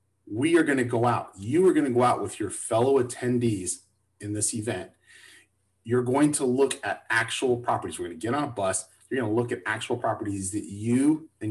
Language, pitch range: English, 105-130 Hz